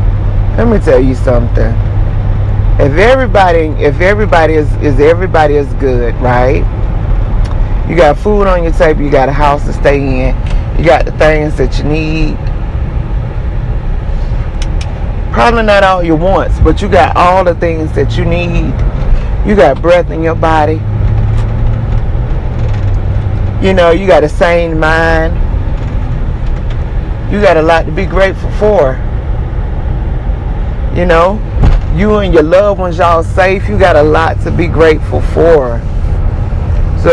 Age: 40-59